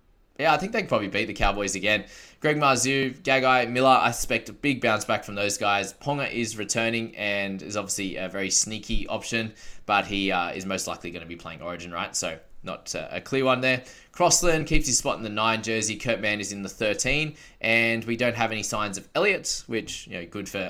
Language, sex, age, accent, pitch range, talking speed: English, male, 20-39, Australian, 100-125 Hz, 230 wpm